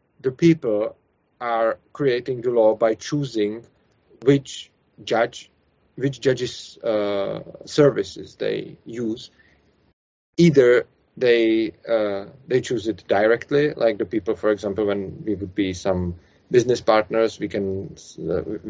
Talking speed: 120 wpm